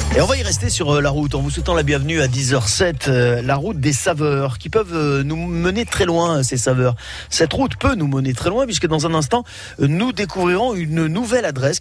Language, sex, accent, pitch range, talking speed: French, male, French, 125-165 Hz, 220 wpm